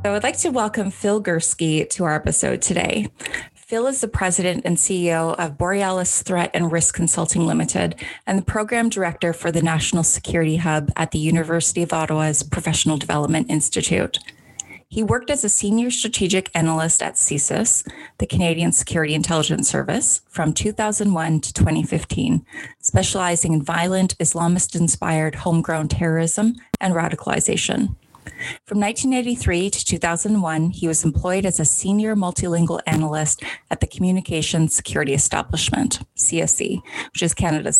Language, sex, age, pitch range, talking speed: English, female, 20-39, 160-190 Hz, 140 wpm